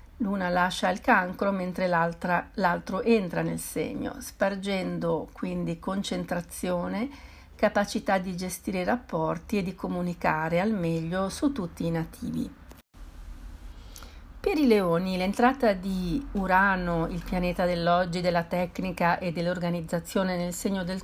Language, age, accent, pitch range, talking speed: Italian, 50-69, native, 170-200 Hz, 125 wpm